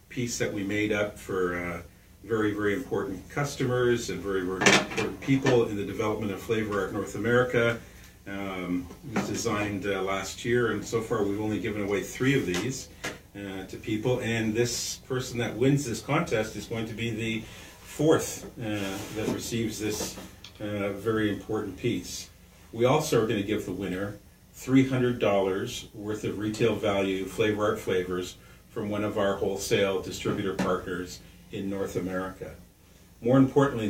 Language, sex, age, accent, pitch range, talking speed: English, male, 50-69, American, 95-120 Hz, 165 wpm